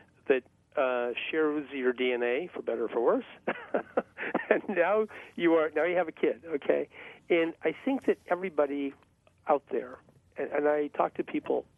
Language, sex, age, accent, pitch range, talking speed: English, male, 50-69, American, 140-180 Hz, 170 wpm